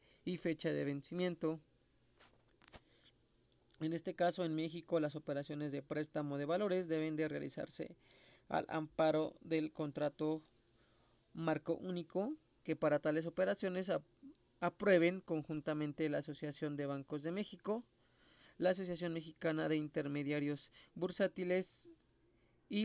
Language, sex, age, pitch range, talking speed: Spanish, male, 30-49, 155-180 Hz, 115 wpm